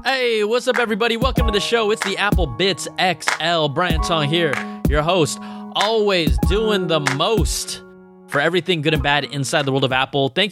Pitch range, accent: 130-170 Hz, American